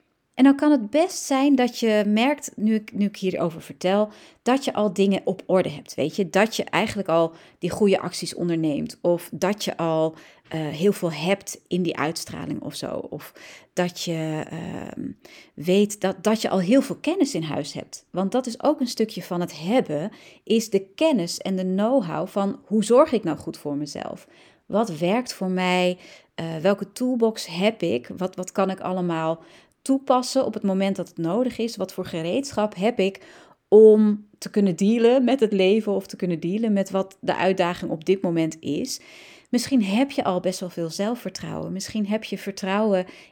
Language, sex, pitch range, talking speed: Dutch, female, 180-240 Hz, 195 wpm